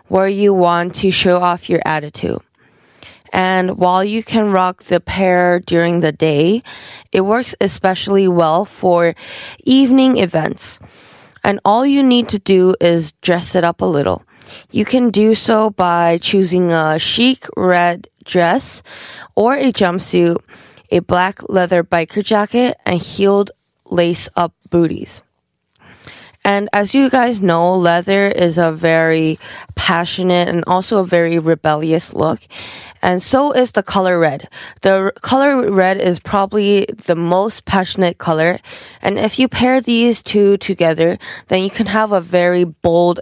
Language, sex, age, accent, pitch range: Korean, female, 20-39, American, 170-205 Hz